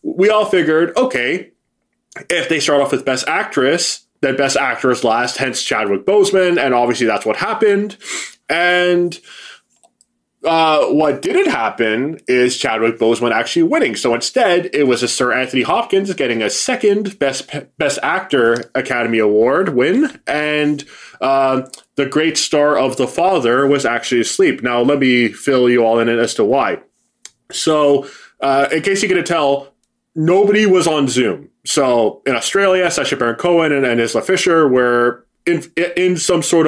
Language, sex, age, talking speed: English, male, 20-39, 160 wpm